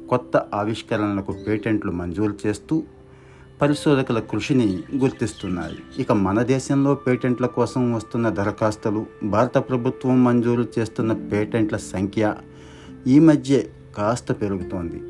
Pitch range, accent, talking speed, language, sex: 95-125 Hz, native, 100 wpm, Telugu, male